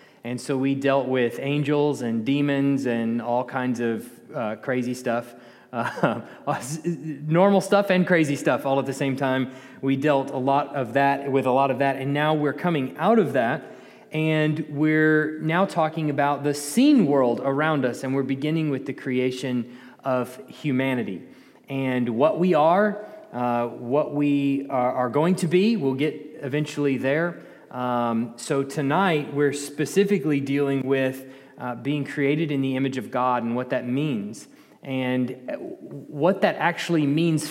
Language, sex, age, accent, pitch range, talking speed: English, male, 20-39, American, 135-165 Hz, 160 wpm